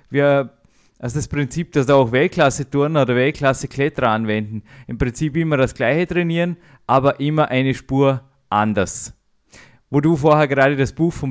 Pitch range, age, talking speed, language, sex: 125-145 Hz, 20-39, 155 wpm, German, male